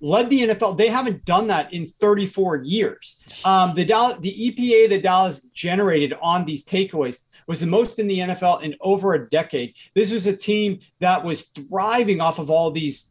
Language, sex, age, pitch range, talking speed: English, male, 40-59, 165-205 Hz, 195 wpm